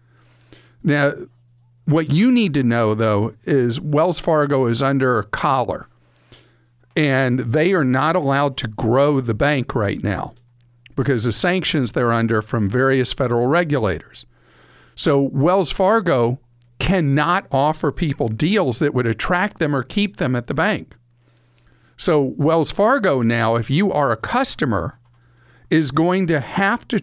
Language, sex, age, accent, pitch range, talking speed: English, male, 50-69, American, 120-155 Hz, 145 wpm